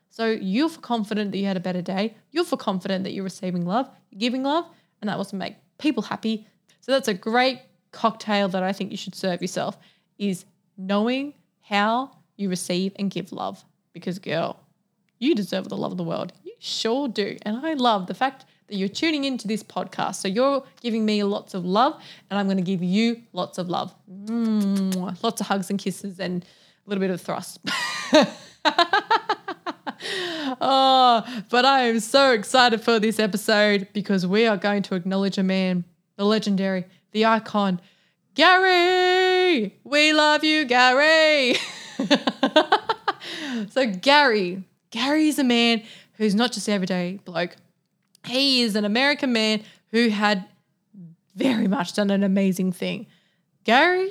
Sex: female